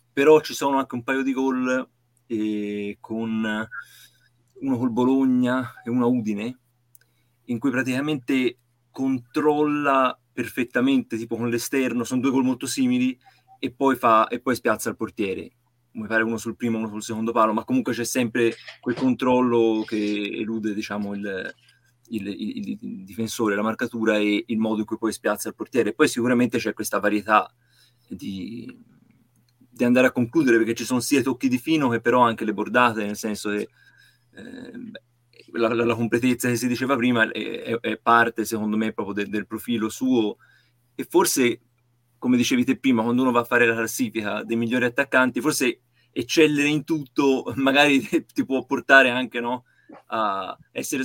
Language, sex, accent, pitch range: Italian, male, native, 115-130 Hz